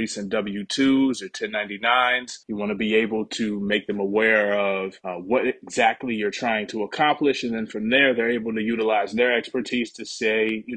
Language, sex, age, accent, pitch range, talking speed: English, male, 30-49, American, 110-125 Hz, 190 wpm